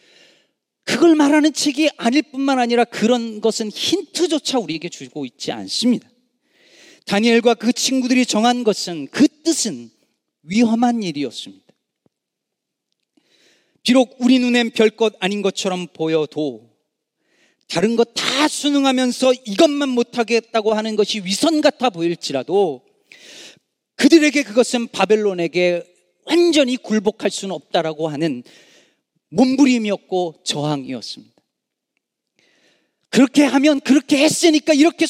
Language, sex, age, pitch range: Korean, male, 40-59, 170-265 Hz